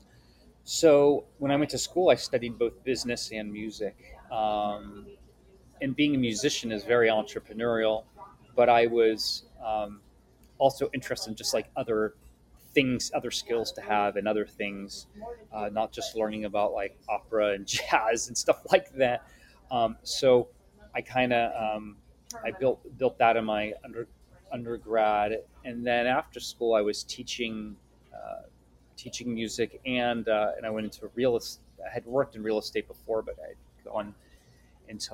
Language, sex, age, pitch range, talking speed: English, male, 30-49, 105-125 Hz, 155 wpm